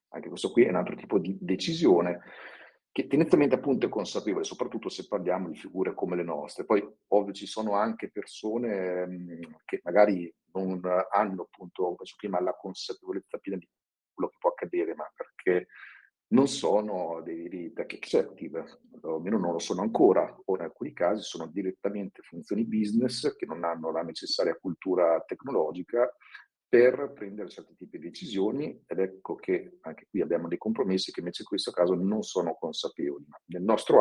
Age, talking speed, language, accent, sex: 50-69, 170 wpm, Italian, native, male